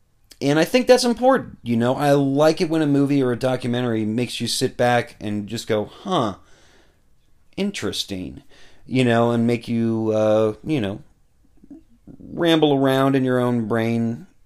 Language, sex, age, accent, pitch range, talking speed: English, male, 30-49, American, 105-145 Hz, 160 wpm